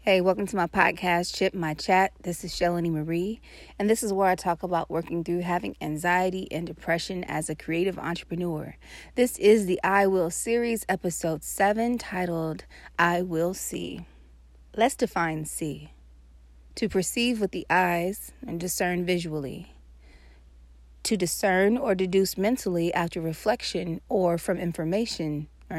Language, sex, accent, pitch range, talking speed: English, female, American, 150-195 Hz, 145 wpm